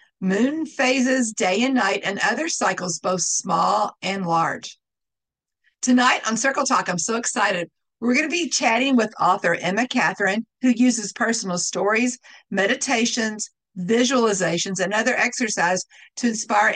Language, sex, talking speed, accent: English, female, 140 wpm, American